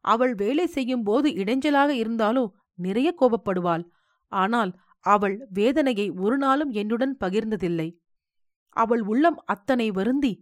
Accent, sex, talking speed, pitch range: native, female, 110 wpm, 185-265 Hz